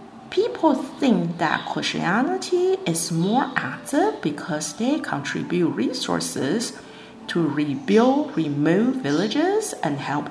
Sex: female